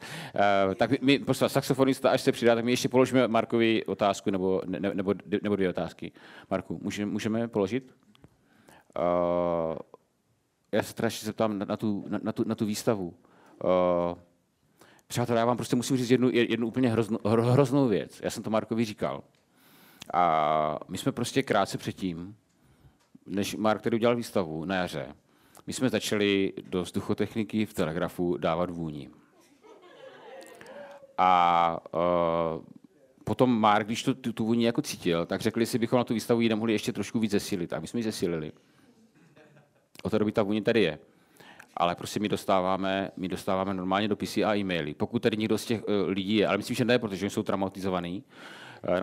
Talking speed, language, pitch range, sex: 170 wpm, Czech, 95-120 Hz, male